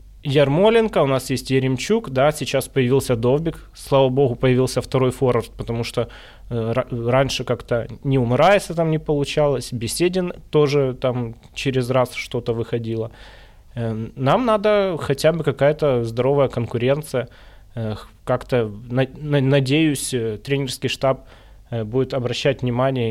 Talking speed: 125 wpm